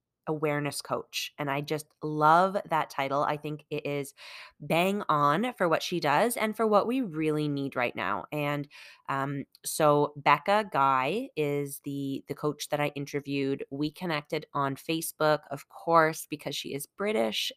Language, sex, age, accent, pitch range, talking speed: English, female, 10-29, American, 145-175 Hz, 165 wpm